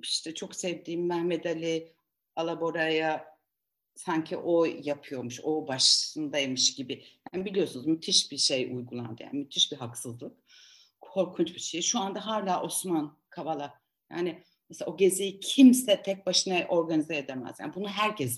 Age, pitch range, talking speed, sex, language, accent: 60-79, 165-235 Hz, 135 wpm, female, Turkish, native